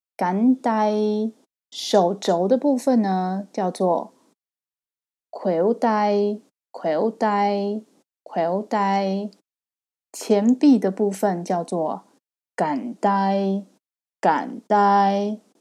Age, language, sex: 20-39, Chinese, female